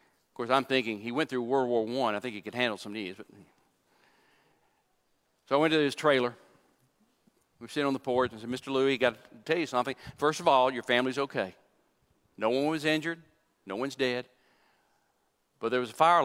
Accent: American